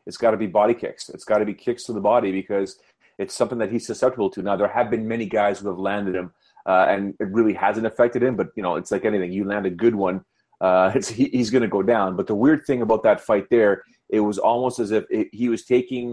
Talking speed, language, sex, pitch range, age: 265 wpm, English, male, 100-115 Hz, 30-49